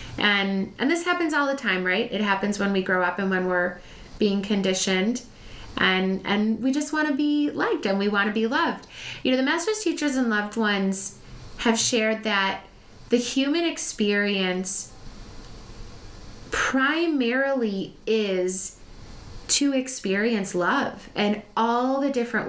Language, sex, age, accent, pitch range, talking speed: English, female, 20-39, American, 185-225 Hz, 150 wpm